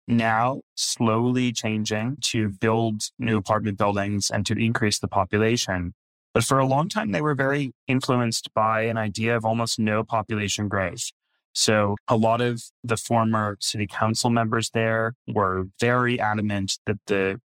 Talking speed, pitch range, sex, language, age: 155 wpm, 100-120 Hz, male, English, 20-39